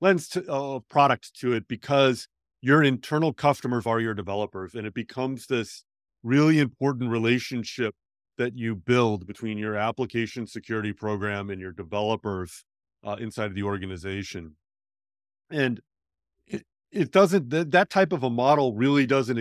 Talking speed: 150 wpm